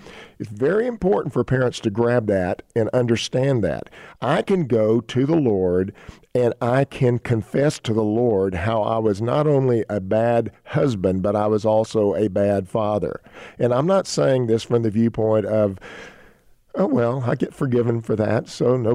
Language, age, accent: English, 50-69, American